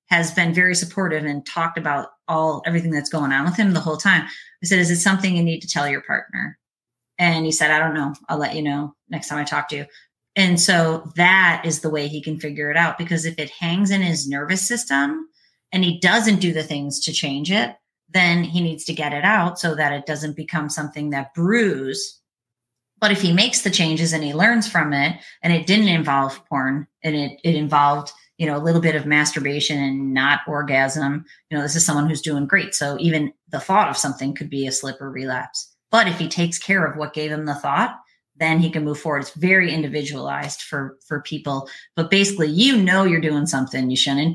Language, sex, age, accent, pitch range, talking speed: English, female, 30-49, American, 145-190 Hz, 225 wpm